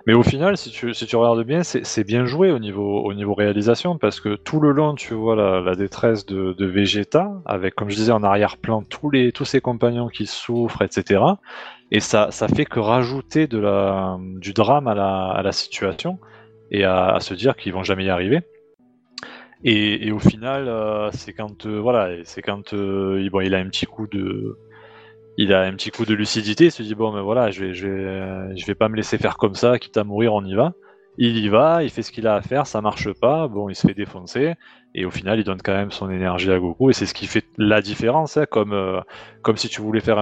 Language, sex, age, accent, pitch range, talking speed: French, male, 20-39, French, 100-120 Hz, 245 wpm